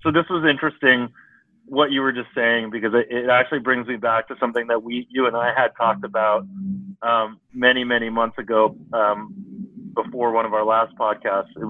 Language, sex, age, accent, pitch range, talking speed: English, male, 40-59, American, 110-130 Hz, 200 wpm